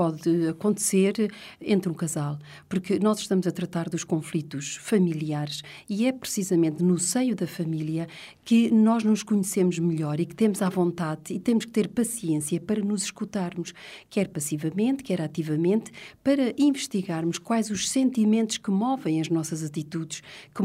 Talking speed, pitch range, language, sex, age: 155 wpm, 165-225 Hz, Portuguese, female, 40-59